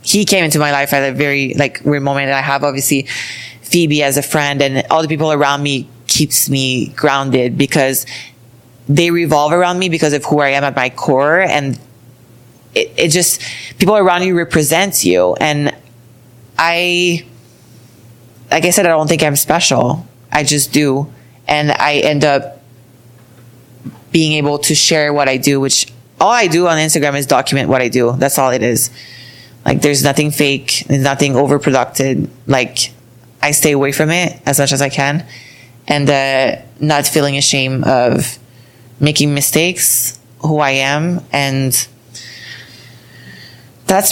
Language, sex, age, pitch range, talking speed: English, female, 20-39, 125-160 Hz, 165 wpm